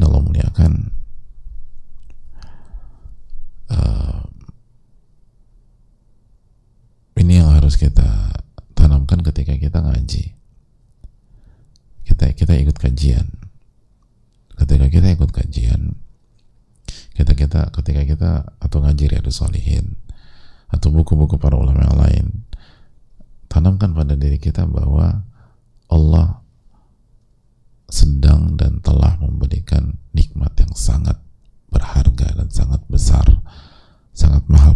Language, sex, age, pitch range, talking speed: English, male, 40-59, 75-100 Hz, 90 wpm